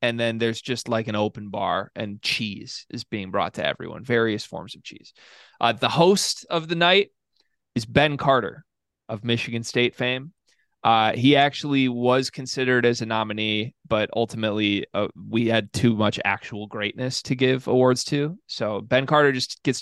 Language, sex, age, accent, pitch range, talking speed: English, male, 20-39, American, 110-135 Hz, 175 wpm